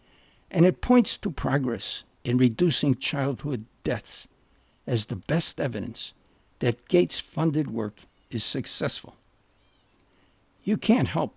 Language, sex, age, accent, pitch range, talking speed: English, male, 60-79, American, 110-150 Hz, 110 wpm